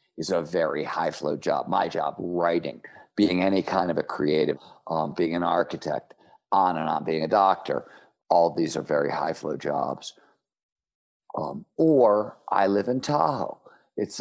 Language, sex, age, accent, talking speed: English, male, 50-69, American, 165 wpm